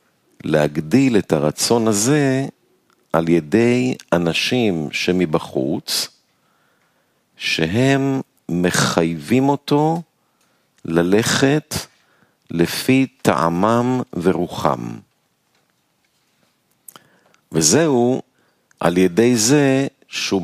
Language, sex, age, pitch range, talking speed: Hebrew, male, 50-69, 85-130 Hz, 60 wpm